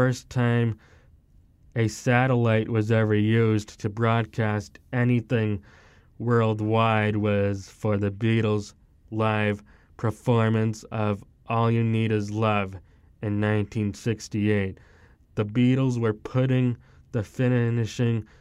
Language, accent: English, American